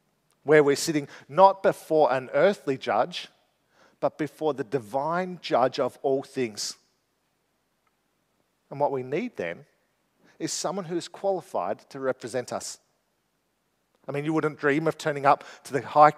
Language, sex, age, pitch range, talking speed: English, male, 40-59, 135-165 Hz, 150 wpm